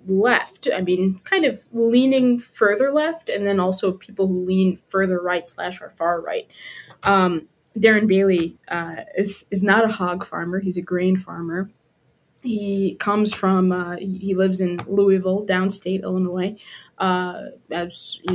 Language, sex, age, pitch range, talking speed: English, female, 20-39, 180-205 Hz, 155 wpm